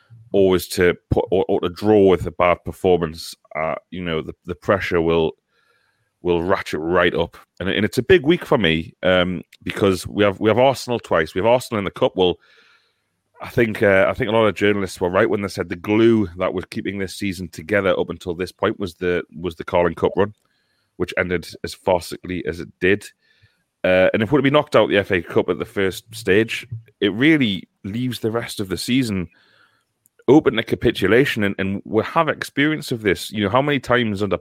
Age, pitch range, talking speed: 30-49, 90-110 Hz, 215 wpm